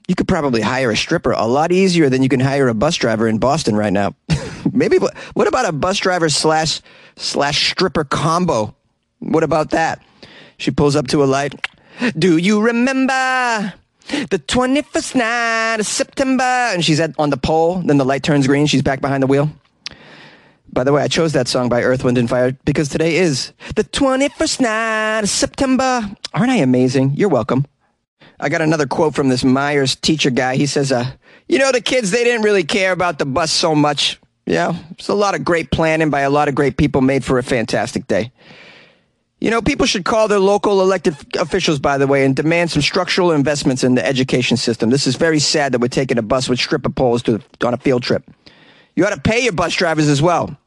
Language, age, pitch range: English, 30-49, 135-195 Hz